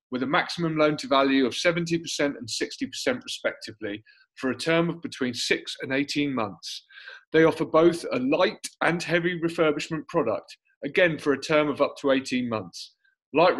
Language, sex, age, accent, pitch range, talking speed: English, male, 30-49, British, 135-185 Hz, 165 wpm